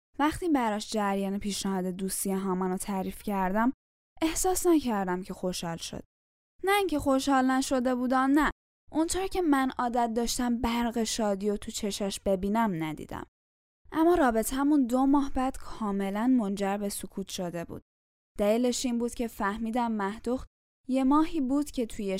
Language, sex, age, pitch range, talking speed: Persian, female, 10-29, 195-250 Hz, 150 wpm